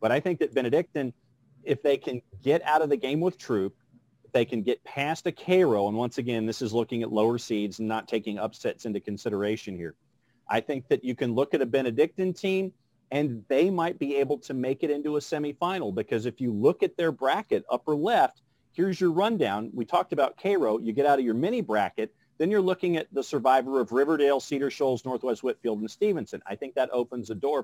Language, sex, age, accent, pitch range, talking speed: English, male, 40-59, American, 115-145 Hz, 215 wpm